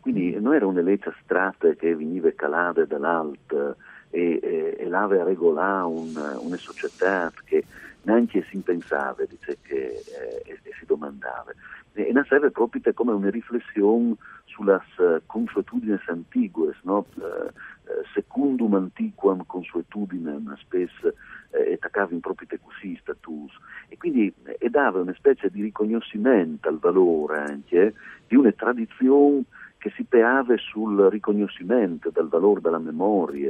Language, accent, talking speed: Italian, native, 130 wpm